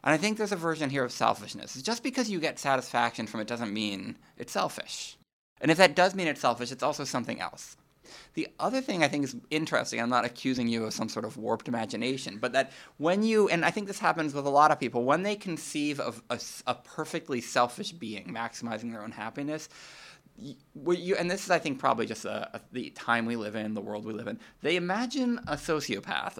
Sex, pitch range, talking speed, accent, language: male, 120-155 Hz, 220 wpm, American, English